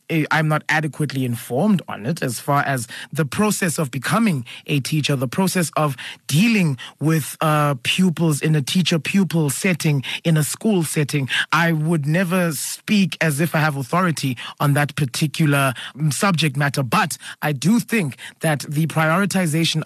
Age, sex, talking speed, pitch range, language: 30-49, male, 155 wpm, 135-180 Hz, English